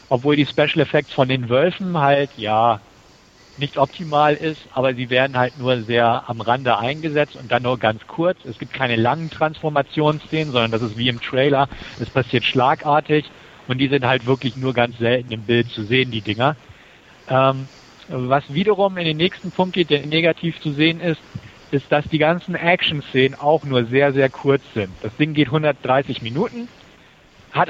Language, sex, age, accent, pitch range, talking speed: German, male, 50-69, German, 125-155 Hz, 180 wpm